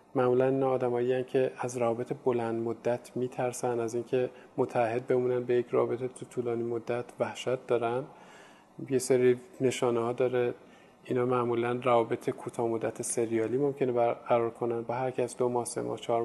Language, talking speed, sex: Persian, 150 wpm, male